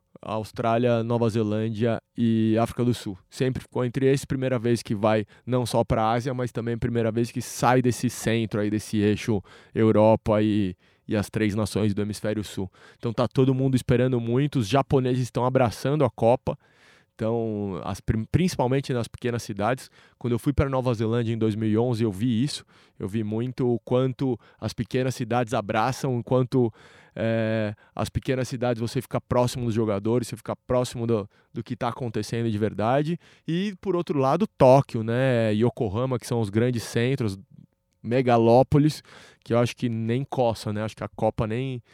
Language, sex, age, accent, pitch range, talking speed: Portuguese, male, 20-39, Brazilian, 110-130 Hz, 180 wpm